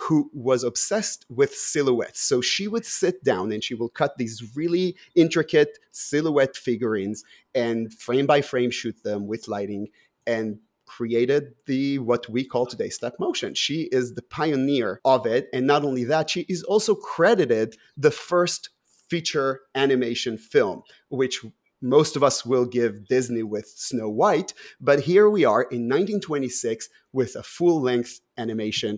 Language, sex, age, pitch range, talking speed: English, male, 30-49, 115-150 Hz, 155 wpm